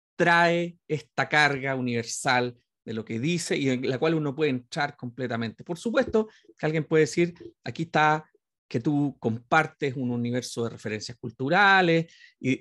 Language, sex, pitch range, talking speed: Spanish, male, 130-165 Hz, 150 wpm